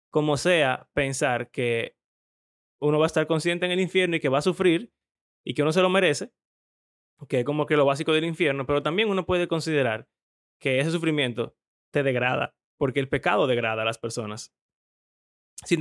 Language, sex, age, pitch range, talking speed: Spanish, male, 20-39, 125-160 Hz, 185 wpm